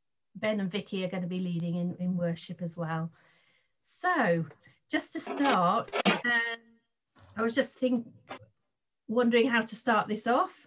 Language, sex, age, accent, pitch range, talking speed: English, female, 40-59, British, 195-235 Hz, 145 wpm